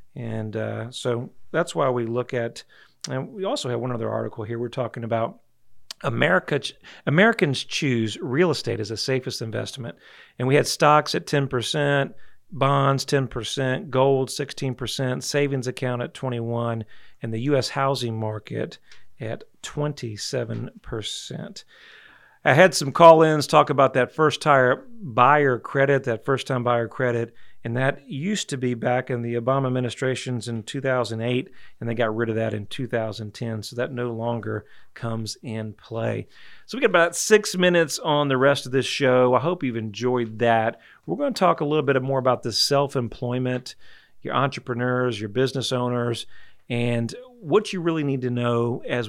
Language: English